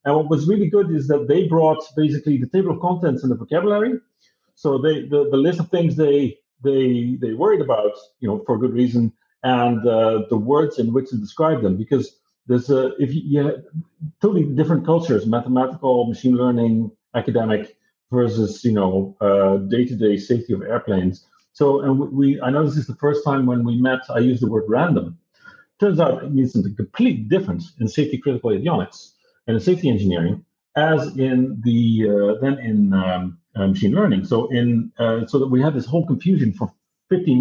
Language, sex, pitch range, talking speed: English, male, 120-160 Hz, 190 wpm